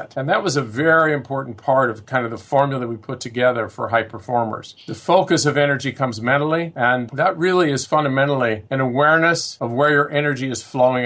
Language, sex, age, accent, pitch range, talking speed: English, male, 50-69, American, 120-145 Hz, 200 wpm